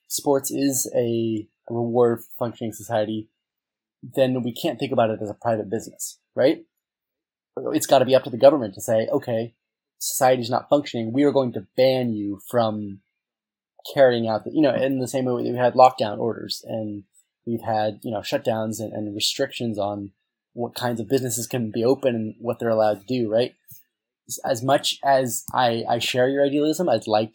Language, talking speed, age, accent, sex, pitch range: English, 190 wpm, 20-39, American, male, 110-130 Hz